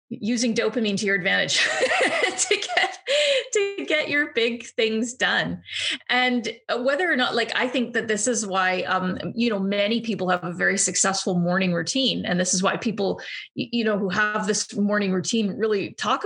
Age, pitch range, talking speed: 30-49, 195-245 Hz, 180 wpm